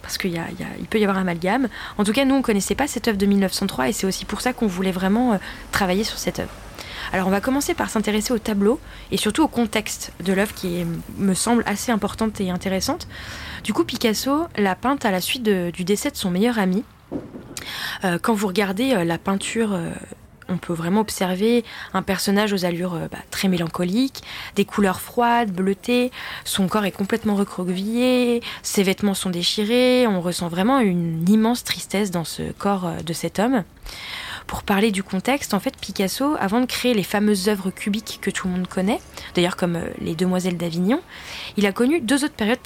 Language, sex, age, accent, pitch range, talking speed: French, female, 20-39, French, 185-235 Hz, 200 wpm